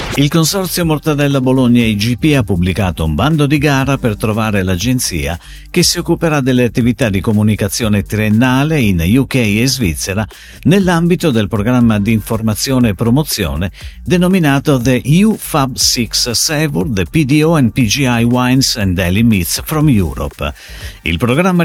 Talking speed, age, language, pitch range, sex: 140 wpm, 50-69, Italian, 95-140 Hz, male